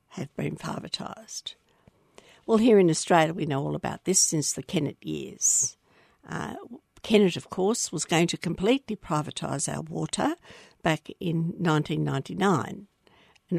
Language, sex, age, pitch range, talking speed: English, female, 60-79, 160-205 Hz, 135 wpm